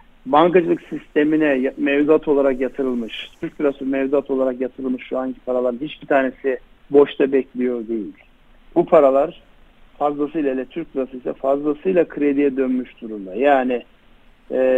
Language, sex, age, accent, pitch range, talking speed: Turkish, male, 60-79, native, 130-150 Hz, 120 wpm